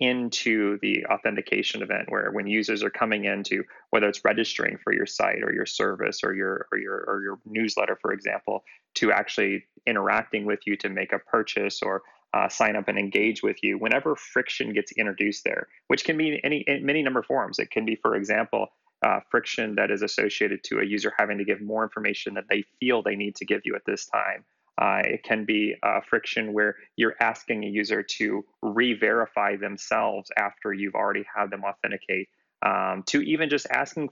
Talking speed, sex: 200 wpm, male